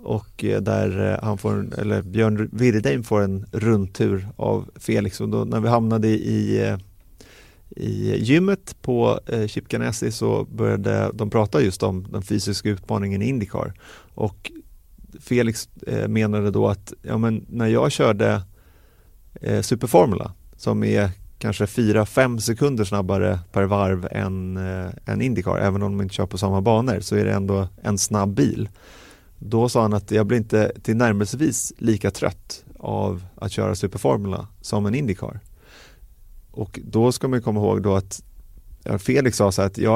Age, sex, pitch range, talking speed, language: 30-49, male, 100-115 Hz, 150 wpm, Swedish